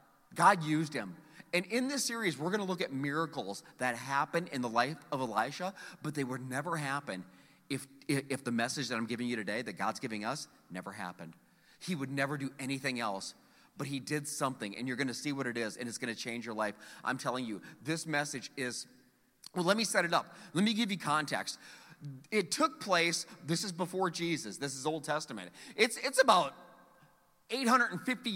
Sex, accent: male, American